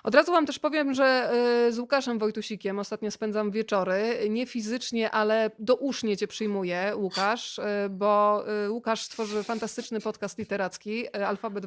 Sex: female